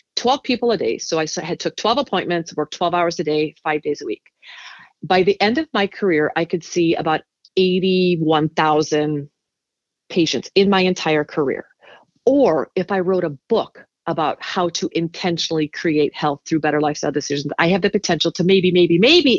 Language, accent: English, American